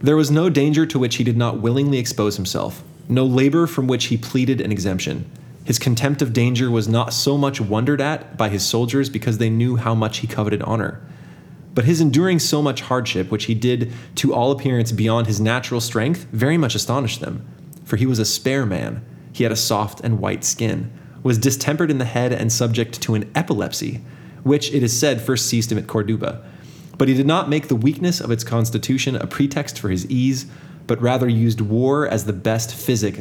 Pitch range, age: 110-140 Hz, 20-39